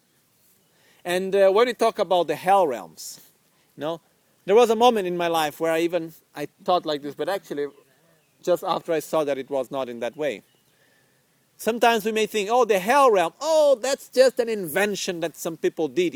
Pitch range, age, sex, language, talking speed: 160-210 Hz, 40-59, male, Italian, 205 wpm